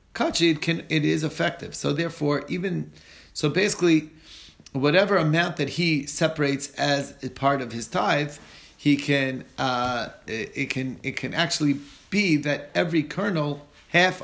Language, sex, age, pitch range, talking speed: English, male, 30-49, 125-155 Hz, 150 wpm